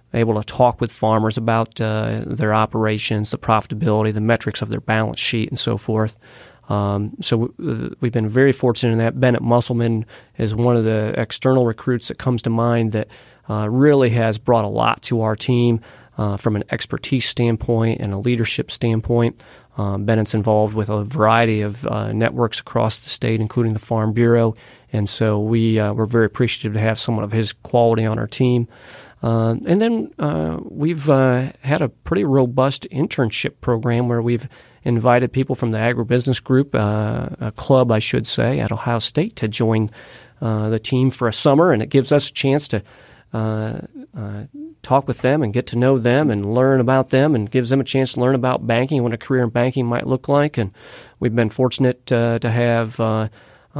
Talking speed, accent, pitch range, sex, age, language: 195 wpm, American, 110-130 Hz, male, 30-49, English